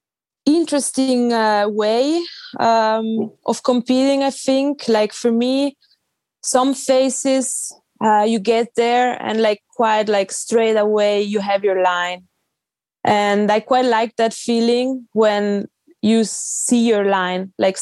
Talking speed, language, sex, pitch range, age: 130 wpm, English, female, 215-255 Hz, 20-39